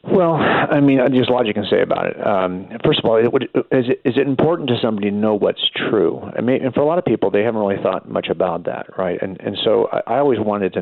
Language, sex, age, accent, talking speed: English, male, 50-69, American, 270 wpm